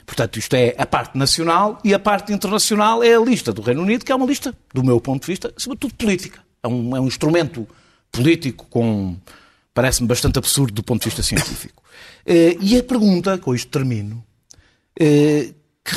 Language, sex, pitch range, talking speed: Portuguese, male, 120-180 Hz, 180 wpm